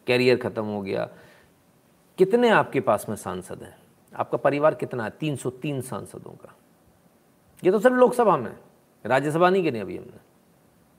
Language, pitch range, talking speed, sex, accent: Hindi, 120-165 Hz, 165 wpm, male, native